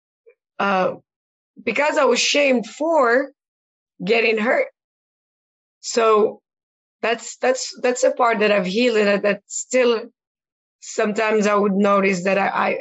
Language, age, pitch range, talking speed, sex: English, 20-39, 185-220 Hz, 120 wpm, female